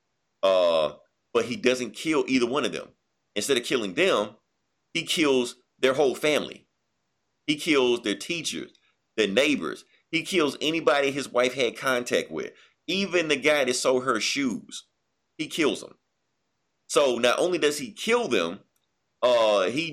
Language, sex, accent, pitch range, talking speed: English, male, American, 110-165 Hz, 150 wpm